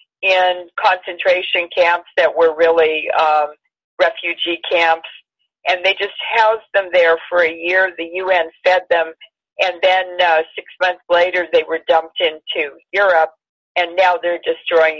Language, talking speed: English, 150 wpm